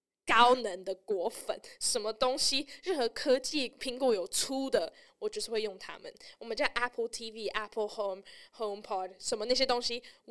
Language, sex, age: Chinese, female, 10-29